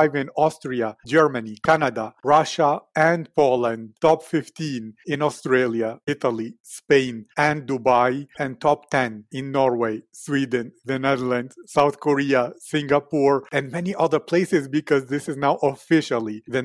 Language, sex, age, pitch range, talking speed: English, male, 40-59, 125-150 Hz, 130 wpm